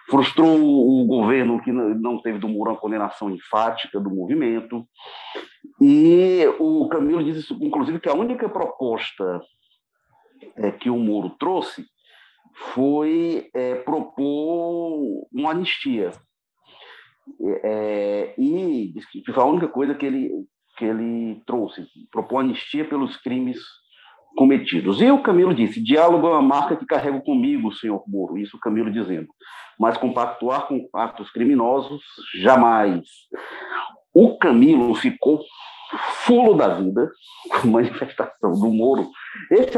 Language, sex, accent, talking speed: Portuguese, male, Brazilian, 125 wpm